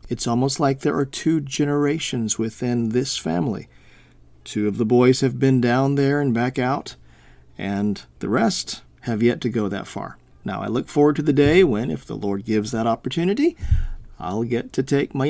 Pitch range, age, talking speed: 110-145 Hz, 40-59, 190 wpm